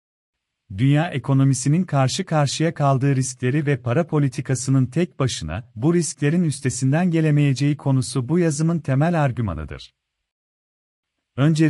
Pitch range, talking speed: 120-155 Hz, 110 wpm